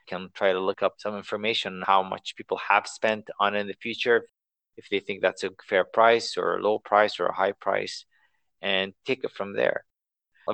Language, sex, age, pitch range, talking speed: English, male, 30-49, 95-115 Hz, 215 wpm